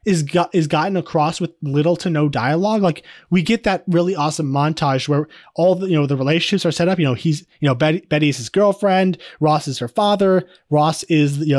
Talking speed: 230 wpm